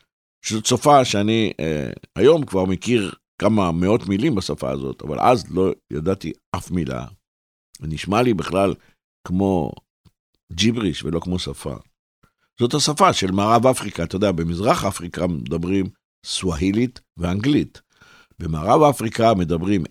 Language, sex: Hebrew, male